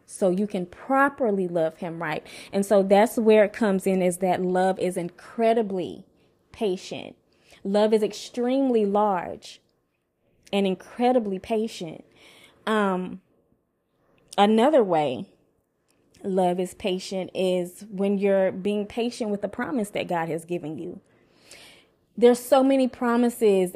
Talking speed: 125 wpm